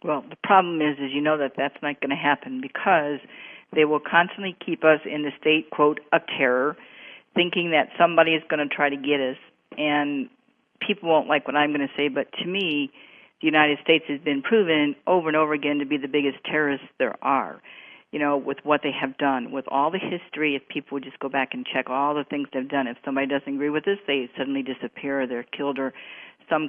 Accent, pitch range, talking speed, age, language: American, 140-165 Hz, 230 wpm, 50-69, English